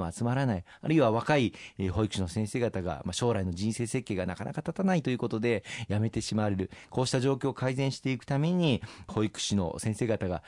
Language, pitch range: Japanese, 95-130 Hz